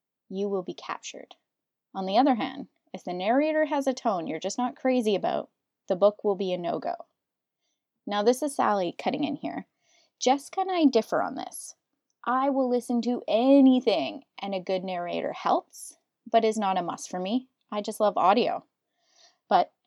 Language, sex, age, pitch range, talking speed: English, female, 20-39, 200-270 Hz, 185 wpm